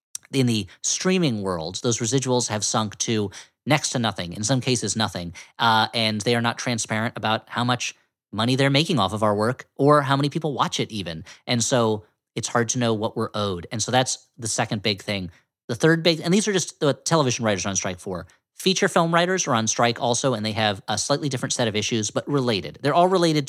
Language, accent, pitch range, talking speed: English, American, 110-145 Hz, 230 wpm